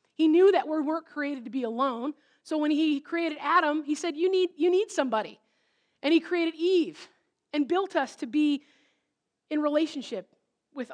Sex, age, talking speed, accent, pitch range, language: female, 20-39, 180 wpm, American, 265-335 Hz, English